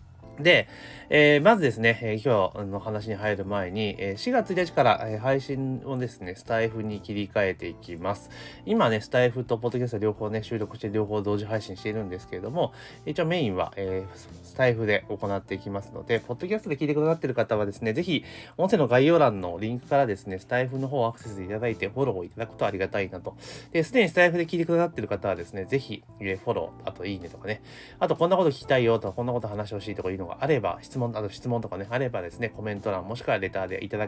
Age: 30-49